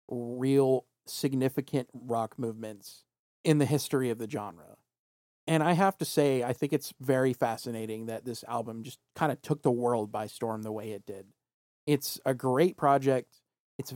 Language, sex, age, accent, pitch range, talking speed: English, male, 30-49, American, 115-140 Hz, 170 wpm